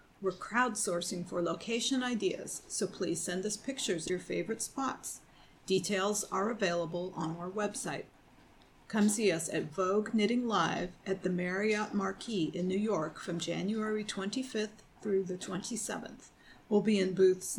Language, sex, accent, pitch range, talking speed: English, female, American, 180-220 Hz, 150 wpm